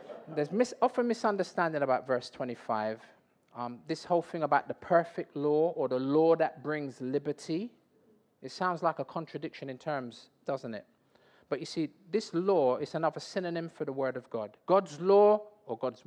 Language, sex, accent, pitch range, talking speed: English, male, British, 135-190 Hz, 170 wpm